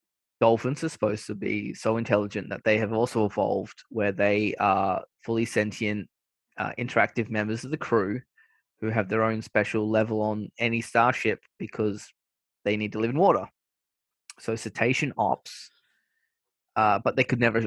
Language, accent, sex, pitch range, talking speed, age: English, Australian, male, 105-120 Hz, 160 wpm, 20-39